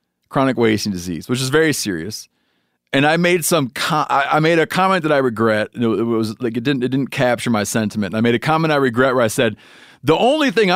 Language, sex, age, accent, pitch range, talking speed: English, male, 30-49, American, 110-155 Hz, 230 wpm